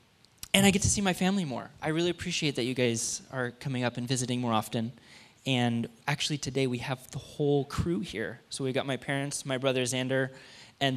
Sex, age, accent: male, 10-29, American